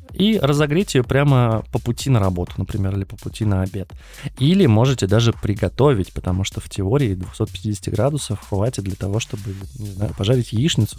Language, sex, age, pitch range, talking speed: Russian, male, 20-39, 95-125 Hz, 170 wpm